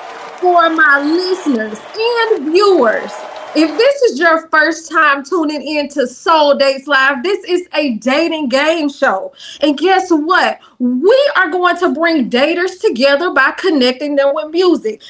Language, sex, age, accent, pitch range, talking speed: English, female, 20-39, American, 285-355 Hz, 150 wpm